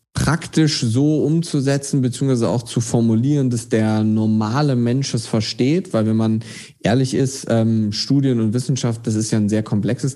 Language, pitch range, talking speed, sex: German, 115-135 Hz, 165 wpm, male